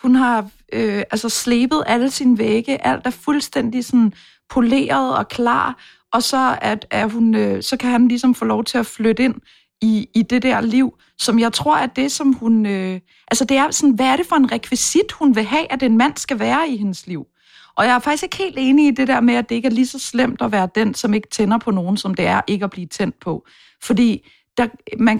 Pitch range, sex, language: 215-260 Hz, female, English